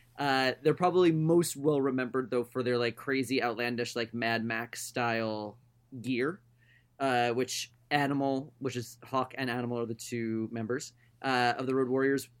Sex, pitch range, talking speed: male, 120-140 Hz, 160 wpm